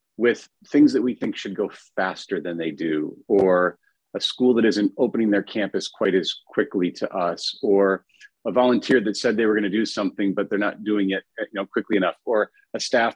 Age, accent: 40-59, American